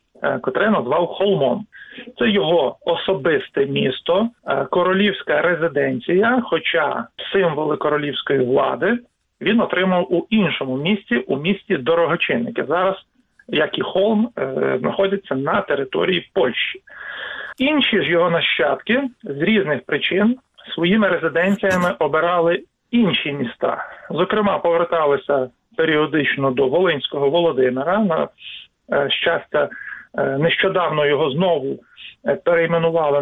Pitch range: 145-200 Hz